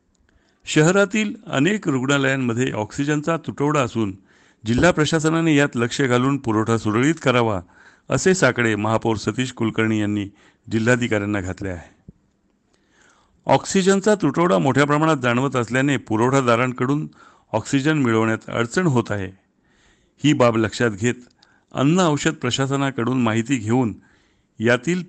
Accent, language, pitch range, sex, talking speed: native, Marathi, 110-140 Hz, male, 105 wpm